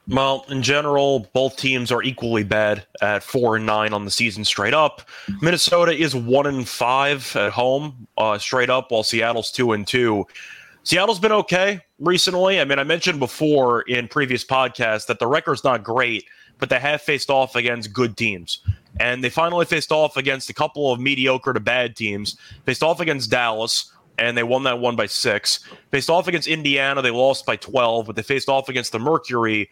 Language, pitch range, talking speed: English, 115-150 Hz, 195 wpm